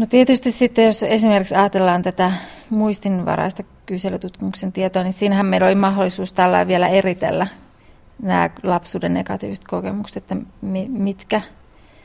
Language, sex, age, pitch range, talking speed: Finnish, female, 30-49, 185-210 Hz, 120 wpm